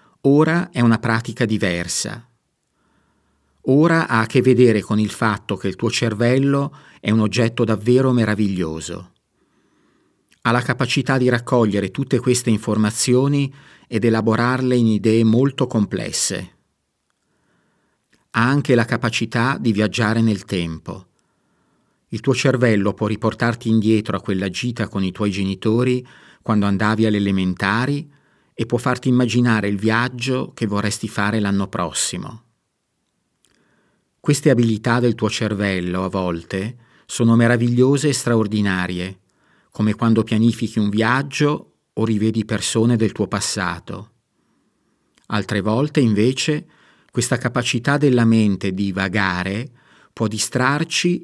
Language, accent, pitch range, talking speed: Italian, native, 105-125 Hz, 125 wpm